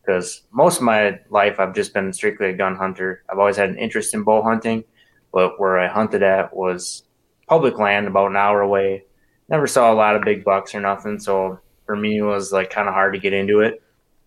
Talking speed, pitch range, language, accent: 225 wpm, 100-115 Hz, English, American